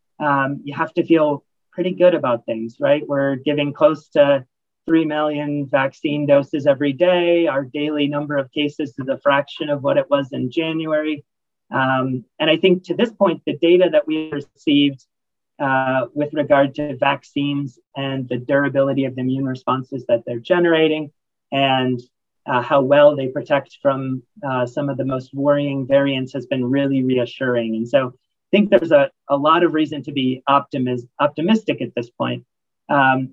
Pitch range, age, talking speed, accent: 130-145 Hz, 30-49, 175 wpm, American